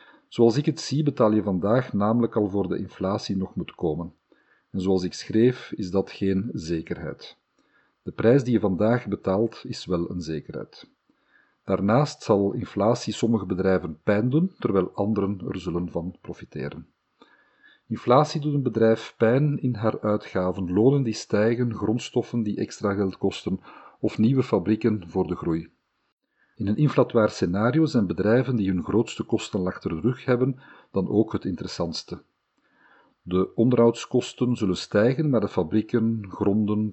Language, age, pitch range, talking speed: Dutch, 50-69, 95-120 Hz, 155 wpm